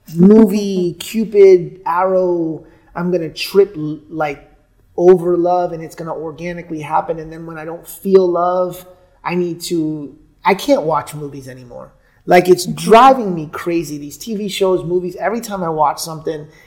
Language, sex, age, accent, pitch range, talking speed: English, male, 30-49, American, 160-210 Hz, 155 wpm